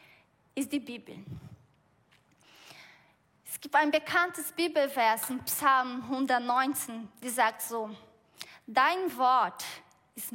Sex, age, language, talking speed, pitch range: female, 20-39, German, 100 wpm, 250-305 Hz